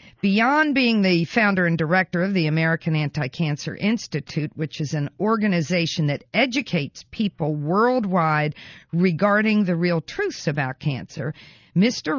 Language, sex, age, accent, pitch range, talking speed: English, female, 50-69, American, 155-205 Hz, 130 wpm